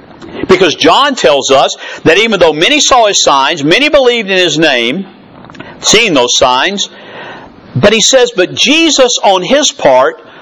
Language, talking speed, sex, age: English, 155 wpm, male, 50-69